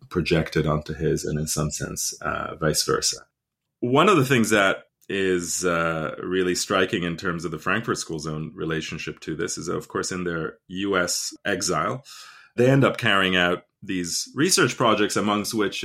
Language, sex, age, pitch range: English, male, 30-49, 85-110 Hz